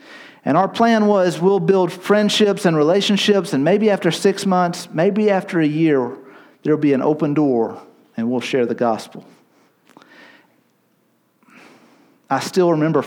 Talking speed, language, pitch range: 140 wpm, English, 150-200 Hz